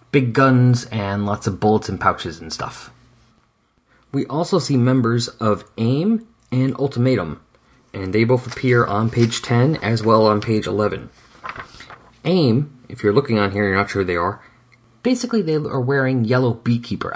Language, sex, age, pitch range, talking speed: English, male, 30-49, 105-130 Hz, 170 wpm